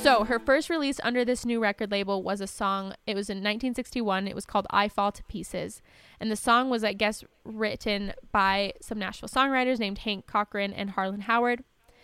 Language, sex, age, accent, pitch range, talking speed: English, female, 10-29, American, 200-235 Hz, 200 wpm